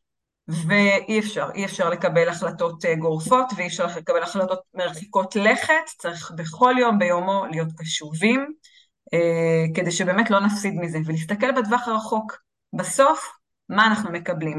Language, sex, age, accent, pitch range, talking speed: Hebrew, female, 30-49, native, 170-230 Hz, 130 wpm